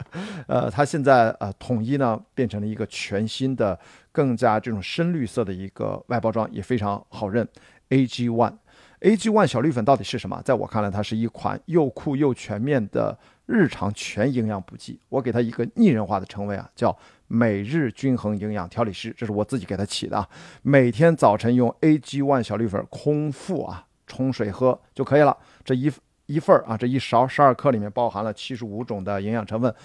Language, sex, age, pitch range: Chinese, male, 50-69, 105-130 Hz